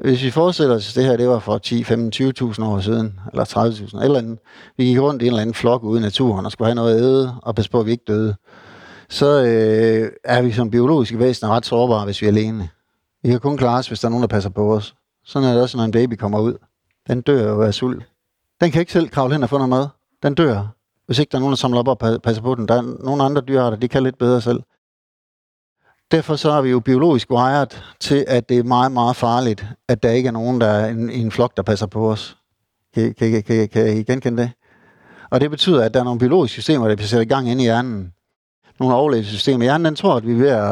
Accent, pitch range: native, 110-130 Hz